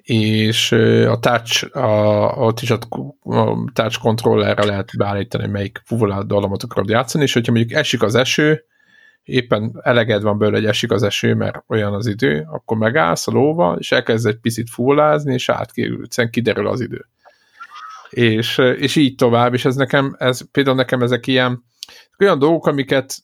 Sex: male